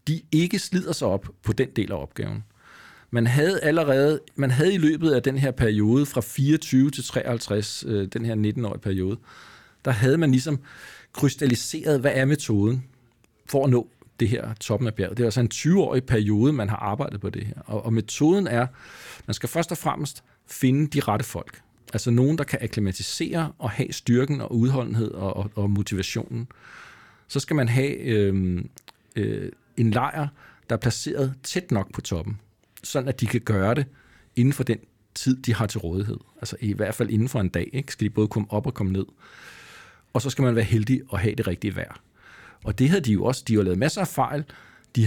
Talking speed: 195 wpm